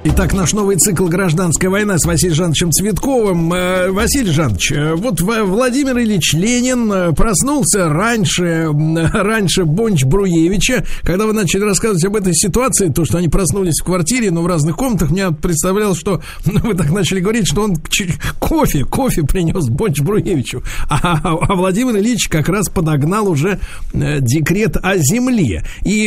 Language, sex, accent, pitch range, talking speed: Russian, male, native, 160-210 Hz, 145 wpm